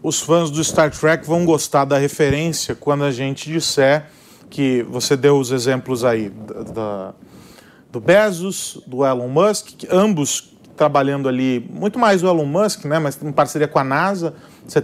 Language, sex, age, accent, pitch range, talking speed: Portuguese, male, 40-59, Brazilian, 145-210 Hz, 175 wpm